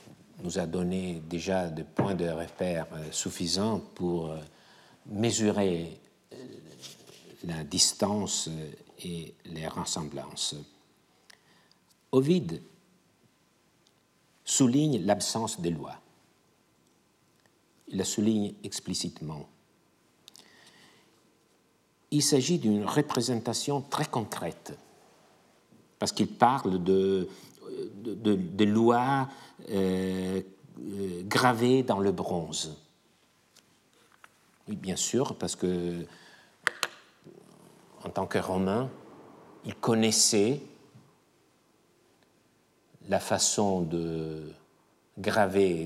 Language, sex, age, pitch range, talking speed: French, male, 60-79, 80-105 Hz, 80 wpm